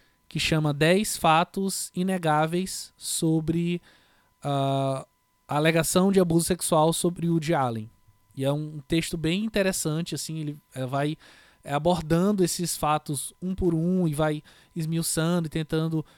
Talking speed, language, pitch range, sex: 135 wpm, Portuguese, 145-175 Hz, male